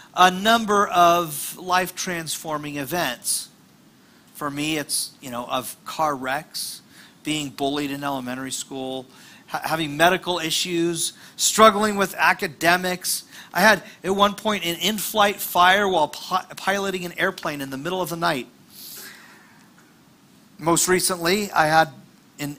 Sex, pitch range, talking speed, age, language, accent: male, 150-205 Hz, 130 wpm, 40-59, English, American